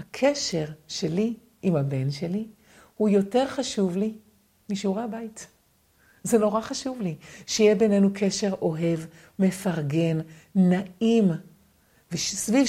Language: Hebrew